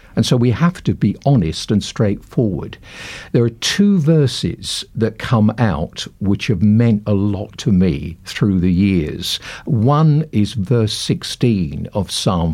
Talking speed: 155 wpm